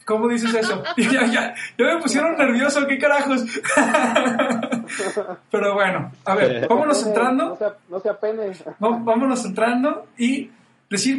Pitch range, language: 195-240 Hz, Spanish